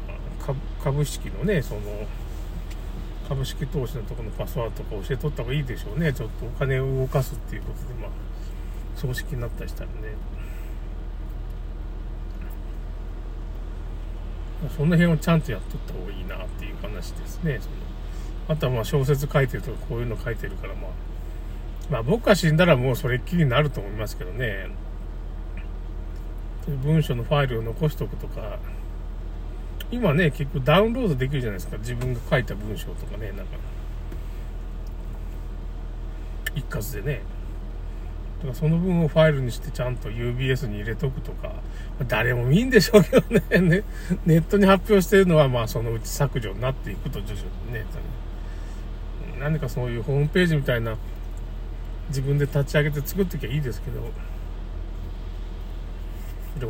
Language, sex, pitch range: Japanese, male, 90-145 Hz